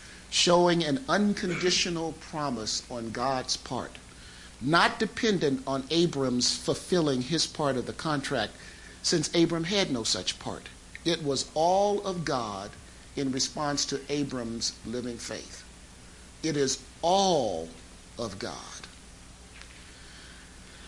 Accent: American